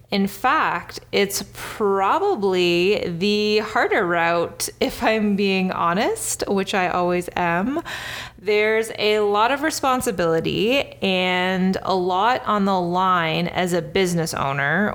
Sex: female